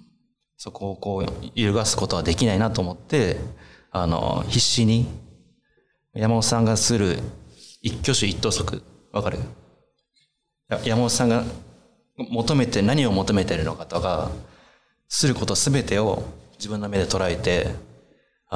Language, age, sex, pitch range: Chinese, 30-49, male, 90-120 Hz